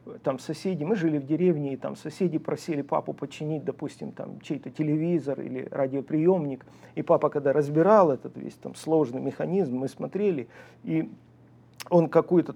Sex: male